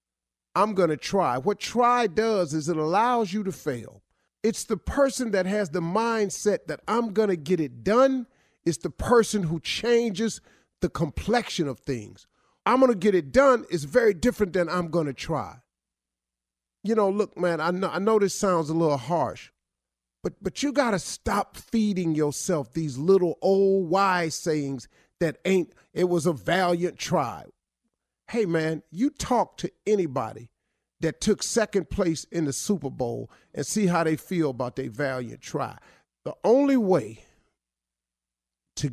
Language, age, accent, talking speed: English, 40-59, American, 170 wpm